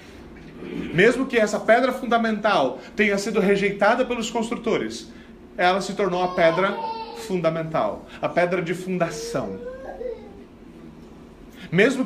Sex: male